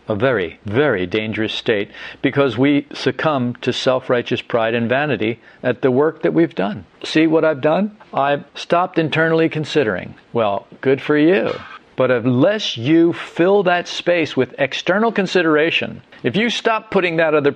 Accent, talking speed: American, 155 wpm